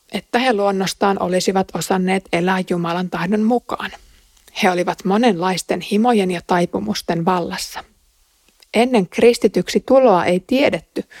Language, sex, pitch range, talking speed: Finnish, female, 180-225 Hz, 115 wpm